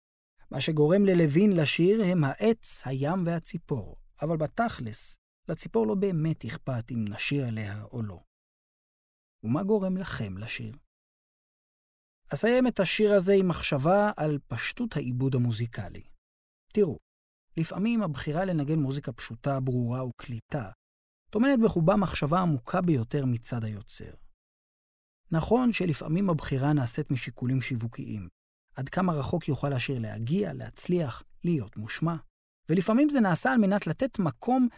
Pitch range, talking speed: 120-190 Hz, 120 wpm